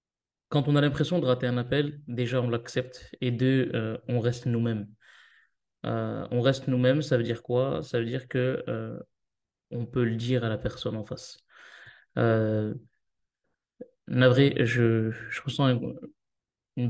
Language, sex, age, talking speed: French, male, 20-39, 160 wpm